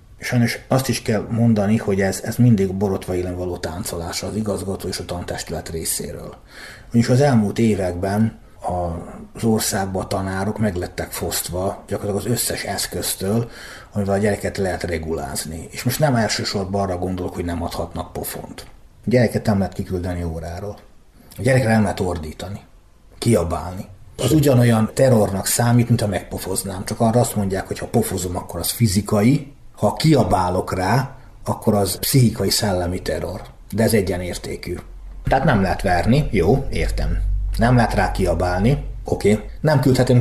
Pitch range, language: 90-115 Hz, Hungarian